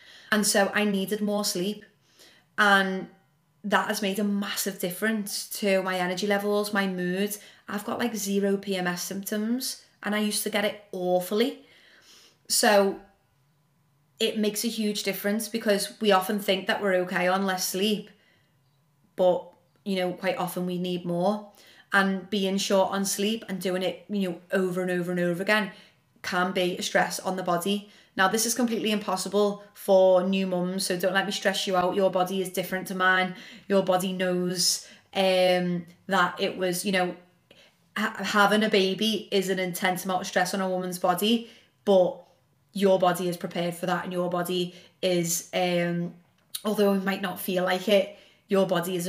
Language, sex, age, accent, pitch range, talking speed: English, female, 30-49, British, 180-205 Hz, 175 wpm